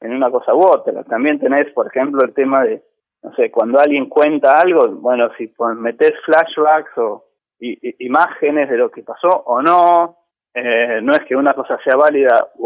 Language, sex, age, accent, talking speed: Spanish, male, 20-39, Argentinian, 185 wpm